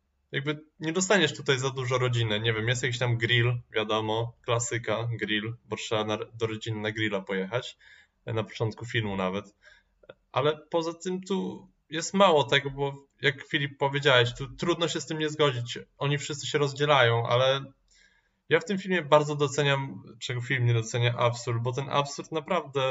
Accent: native